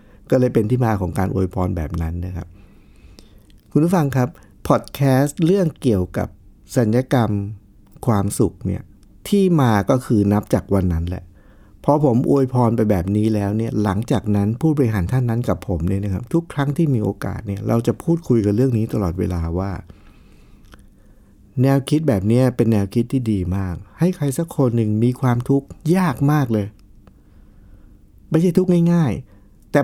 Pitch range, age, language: 100-135 Hz, 60-79, Thai